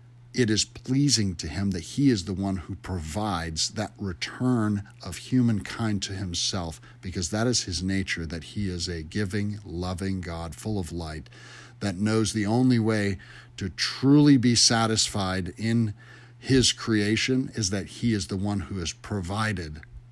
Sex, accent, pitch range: male, American, 95-120 Hz